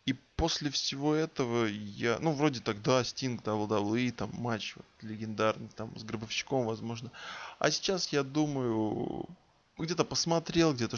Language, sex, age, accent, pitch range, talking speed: Russian, male, 20-39, native, 110-145 Hz, 140 wpm